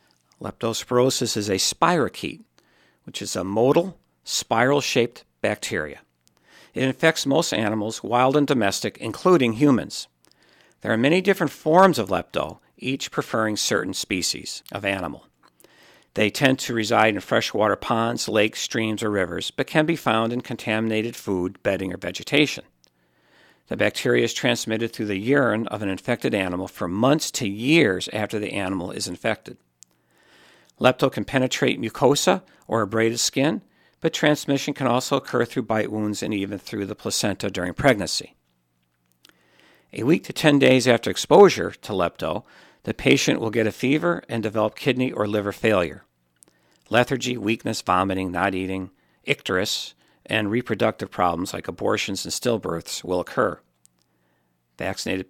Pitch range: 95-130 Hz